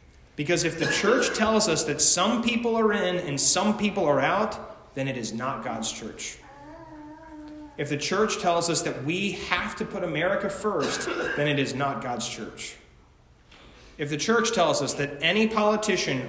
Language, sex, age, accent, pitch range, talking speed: English, male, 30-49, American, 130-180 Hz, 175 wpm